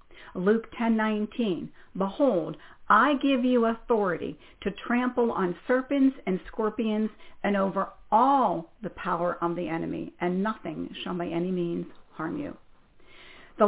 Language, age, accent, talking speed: English, 50-69, American, 130 wpm